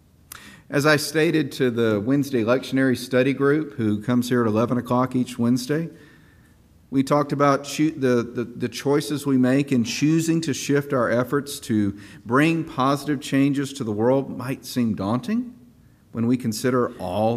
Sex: male